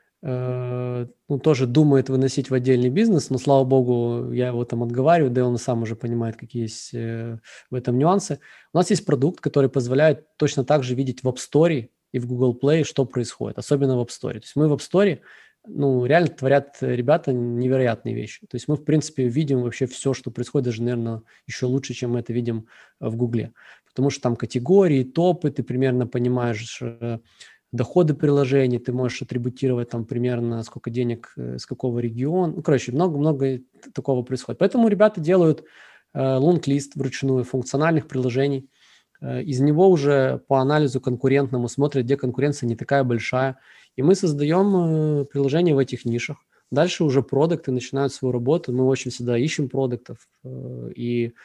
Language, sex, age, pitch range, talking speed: Russian, male, 20-39, 120-145 Hz, 175 wpm